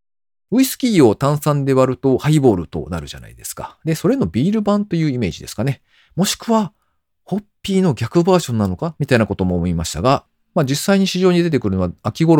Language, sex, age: Japanese, male, 40-59